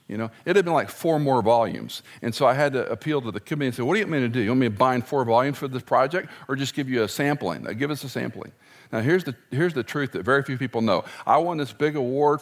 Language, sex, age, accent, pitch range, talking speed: English, male, 50-69, American, 120-160 Hz, 305 wpm